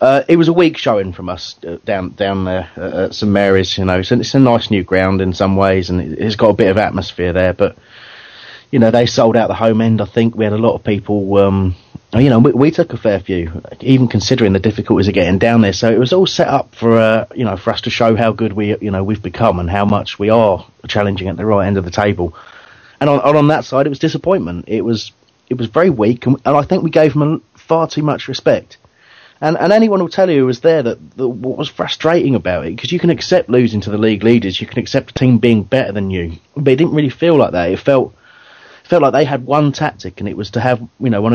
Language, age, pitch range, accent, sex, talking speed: English, 30-49, 100-130 Hz, British, male, 265 wpm